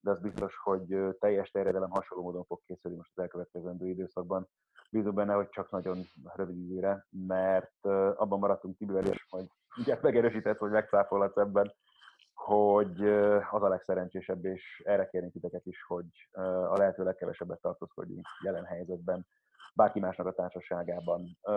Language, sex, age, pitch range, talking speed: Hungarian, male, 30-49, 95-105 Hz, 140 wpm